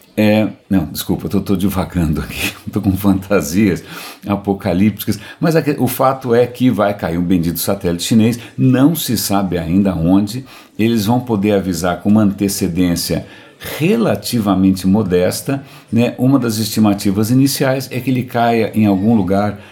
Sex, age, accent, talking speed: male, 60-79, Brazilian, 145 wpm